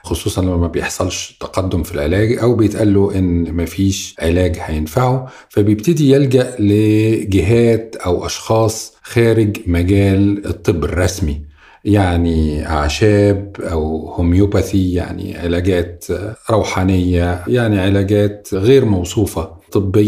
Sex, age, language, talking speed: male, 50-69, Arabic, 100 wpm